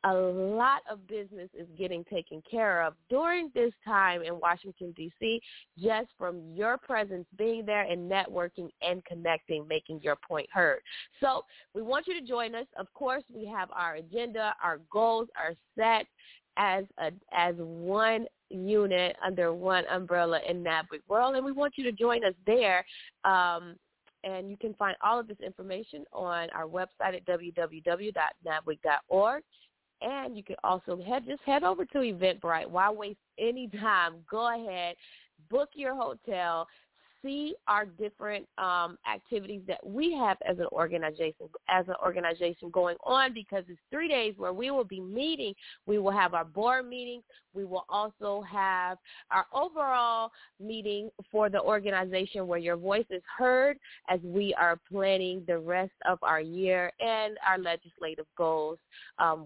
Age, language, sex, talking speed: 20-39, English, female, 160 wpm